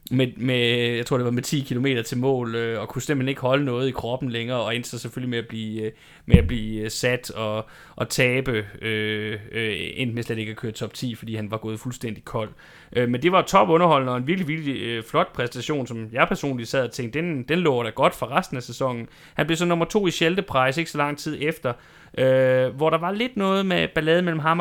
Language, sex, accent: Danish, male, native